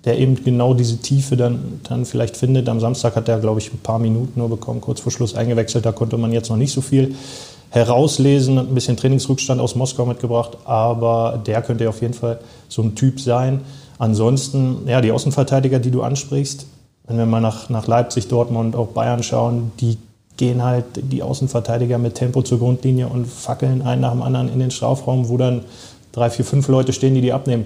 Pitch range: 120-135 Hz